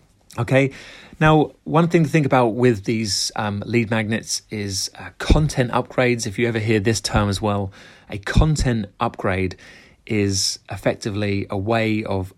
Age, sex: 30-49, male